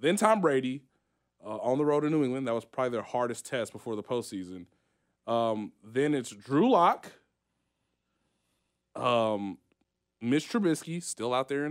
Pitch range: 95-155 Hz